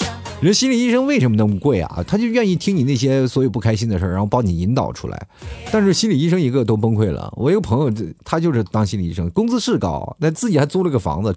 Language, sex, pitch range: Chinese, male, 105-175 Hz